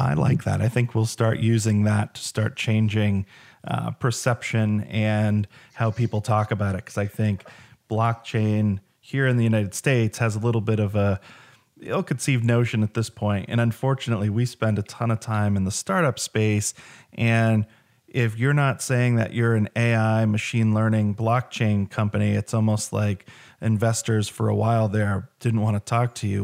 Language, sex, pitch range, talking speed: English, male, 105-120 Hz, 180 wpm